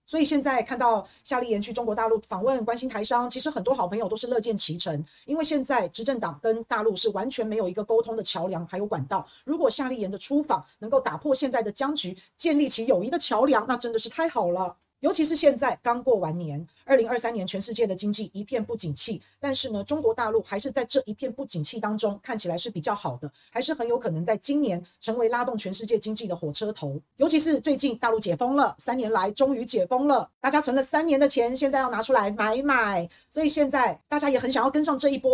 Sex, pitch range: female, 195-265 Hz